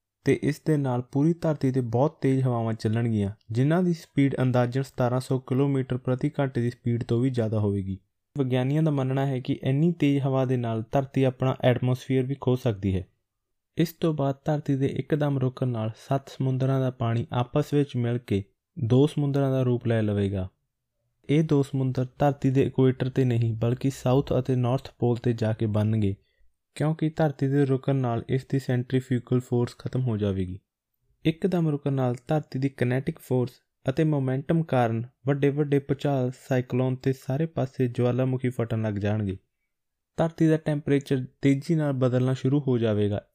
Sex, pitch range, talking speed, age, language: male, 120-140 Hz, 160 wpm, 20-39, Punjabi